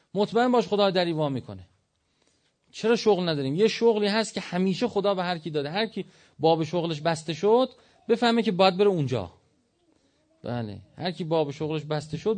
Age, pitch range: 40-59, 125-180 Hz